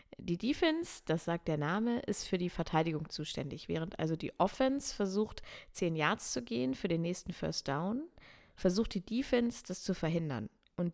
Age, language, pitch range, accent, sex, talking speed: 30-49, German, 155-195 Hz, German, female, 175 wpm